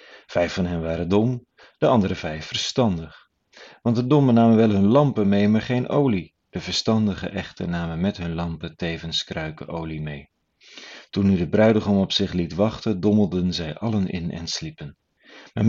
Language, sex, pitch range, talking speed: Dutch, male, 85-110 Hz, 175 wpm